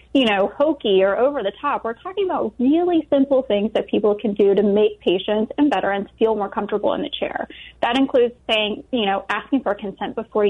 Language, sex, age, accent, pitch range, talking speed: English, female, 20-39, American, 205-265 Hz, 210 wpm